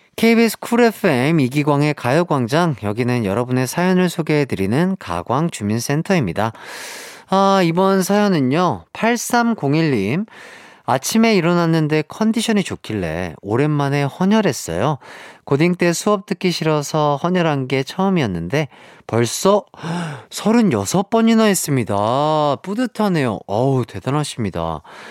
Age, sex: 40-59, male